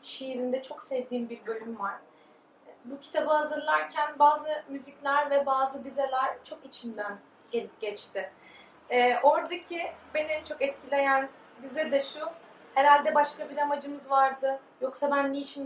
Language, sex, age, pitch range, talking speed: Turkish, female, 30-49, 250-300 Hz, 135 wpm